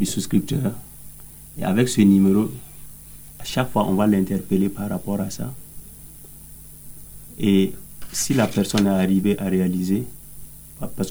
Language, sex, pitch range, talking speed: English, male, 95-110 Hz, 130 wpm